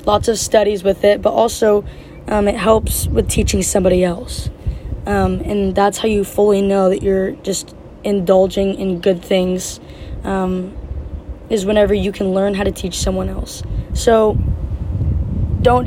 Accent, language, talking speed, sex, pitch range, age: American, English, 155 wpm, female, 185-210 Hz, 20-39